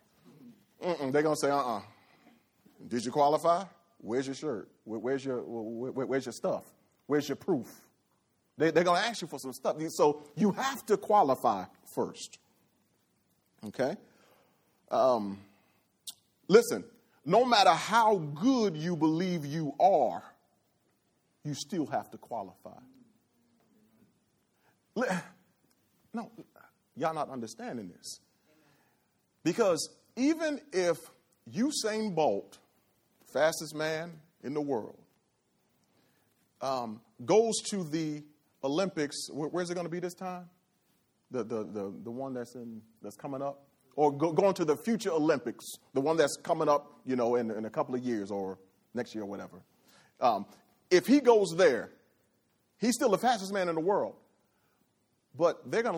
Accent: American